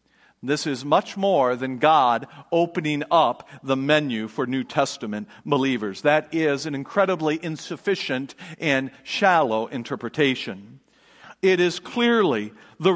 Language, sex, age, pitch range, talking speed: English, male, 50-69, 140-195 Hz, 120 wpm